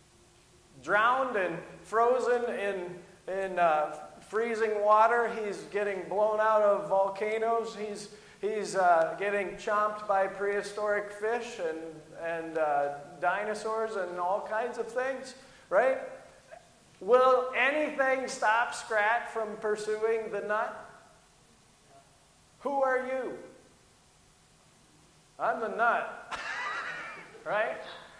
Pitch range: 170-235 Hz